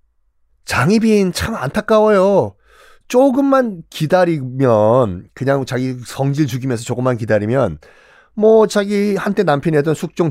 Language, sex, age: Korean, male, 30-49